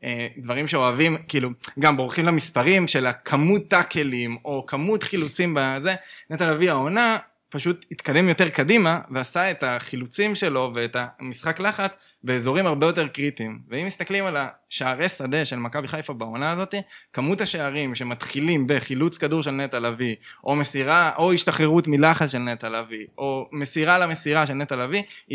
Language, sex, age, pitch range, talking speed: Hebrew, male, 20-39, 135-180 Hz, 150 wpm